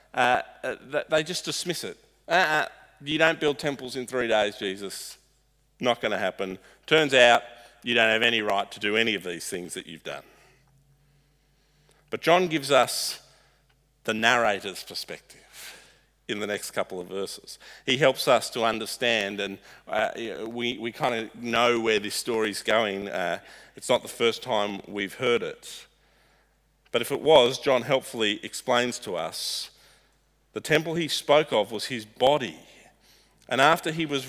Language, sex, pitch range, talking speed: English, male, 115-155 Hz, 165 wpm